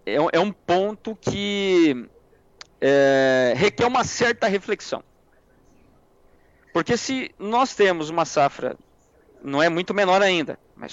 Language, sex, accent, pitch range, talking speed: Portuguese, male, Brazilian, 145-200 Hz, 110 wpm